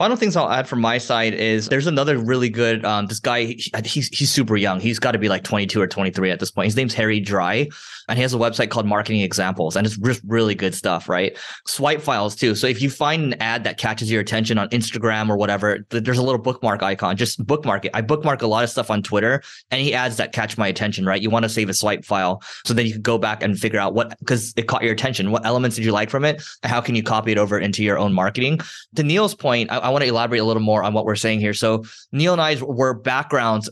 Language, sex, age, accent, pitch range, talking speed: English, male, 20-39, American, 105-130 Hz, 275 wpm